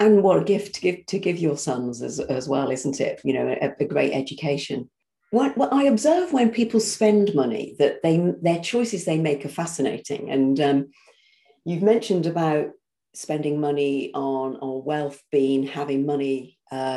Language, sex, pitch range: English, female, 145-210 Hz